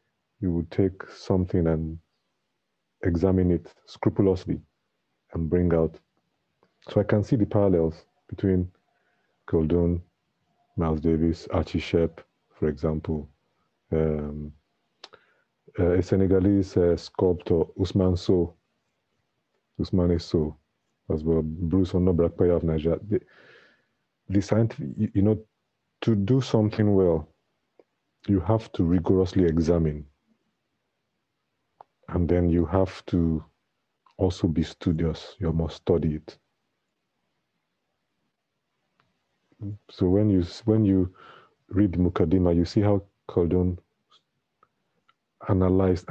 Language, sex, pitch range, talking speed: English, male, 85-100 Hz, 105 wpm